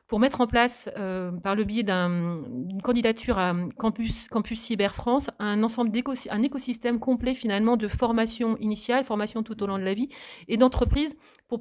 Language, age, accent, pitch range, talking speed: French, 30-49, French, 195-235 Hz, 180 wpm